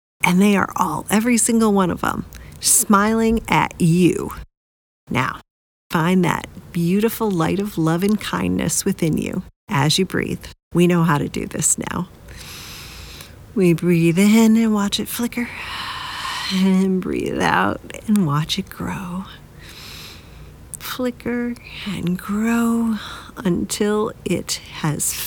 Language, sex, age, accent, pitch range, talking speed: English, female, 40-59, American, 160-205 Hz, 125 wpm